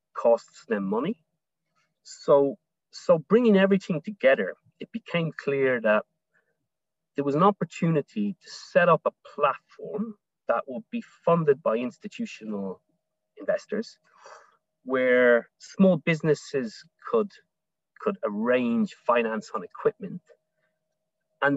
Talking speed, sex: 105 wpm, male